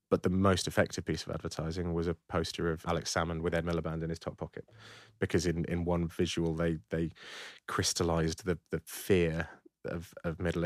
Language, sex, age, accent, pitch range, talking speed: English, male, 30-49, British, 85-95 Hz, 190 wpm